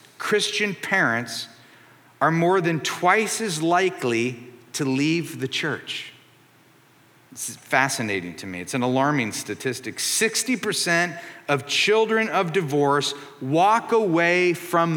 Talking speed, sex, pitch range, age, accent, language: 110 wpm, male, 130-170 Hz, 40-59, American, English